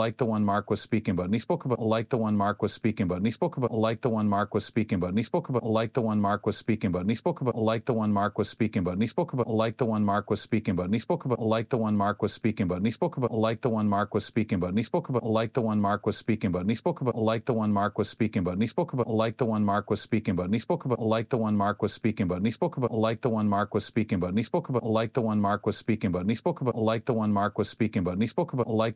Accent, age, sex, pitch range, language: American, 40-59, male, 105-120 Hz, English